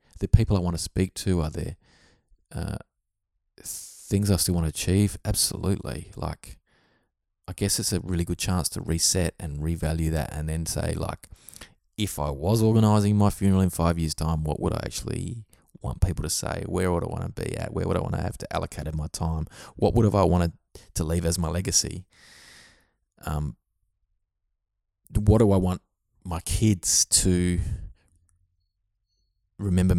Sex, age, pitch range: male, 20-39, 85-100 Hz